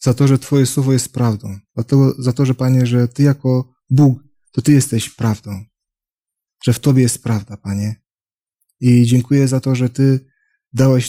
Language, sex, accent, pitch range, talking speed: Polish, male, native, 115-135 Hz, 175 wpm